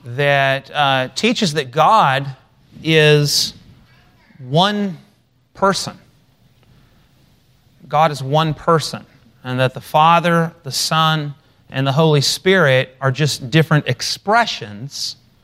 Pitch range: 125-160 Hz